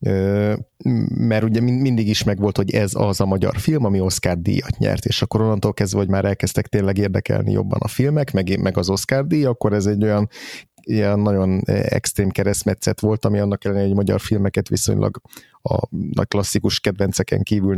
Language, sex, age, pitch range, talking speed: Hungarian, male, 30-49, 95-115 Hz, 180 wpm